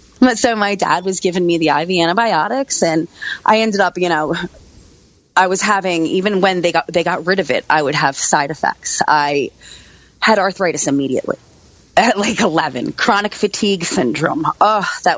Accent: American